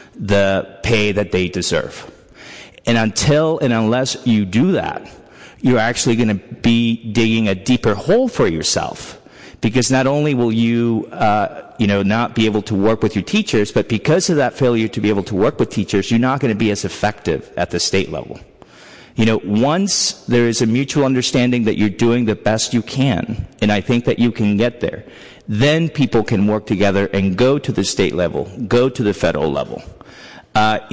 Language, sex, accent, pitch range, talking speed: English, male, American, 100-120 Hz, 200 wpm